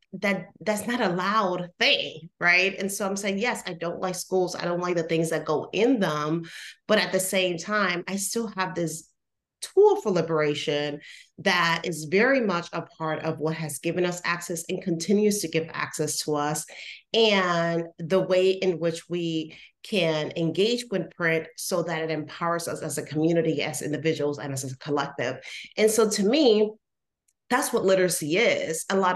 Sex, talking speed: female, 185 wpm